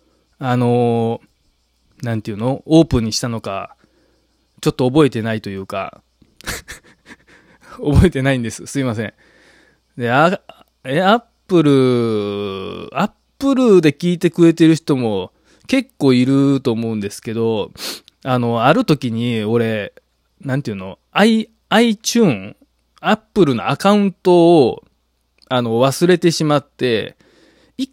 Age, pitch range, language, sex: 20-39, 110-165 Hz, Japanese, male